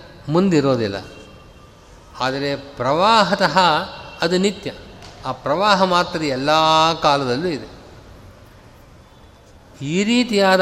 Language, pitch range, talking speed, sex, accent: Kannada, 135-180 Hz, 75 wpm, male, native